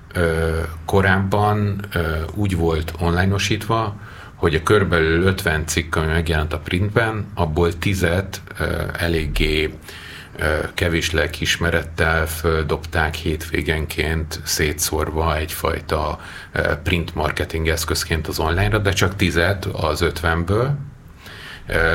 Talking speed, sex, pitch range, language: 95 wpm, male, 80-100 Hz, Hungarian